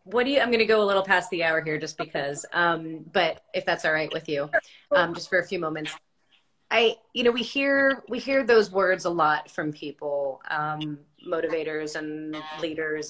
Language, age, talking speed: English, 30-49, 210 wpm